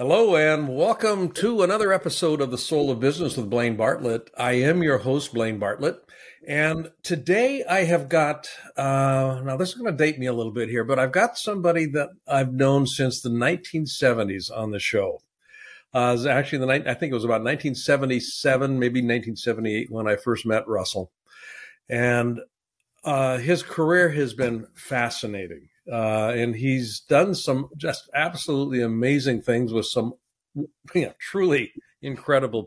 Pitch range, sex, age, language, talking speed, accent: 115-150 Hz, male, 60-79, English, 165 wpm, American